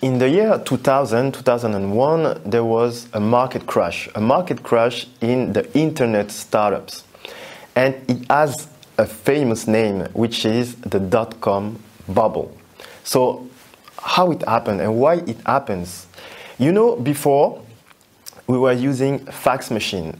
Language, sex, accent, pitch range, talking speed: French, male, French, 115-150 Hz, 135 wpm